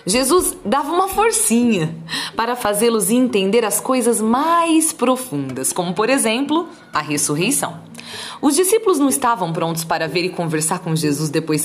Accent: Brazilian